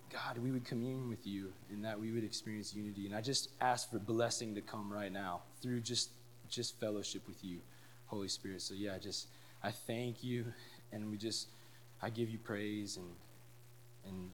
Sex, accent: male, American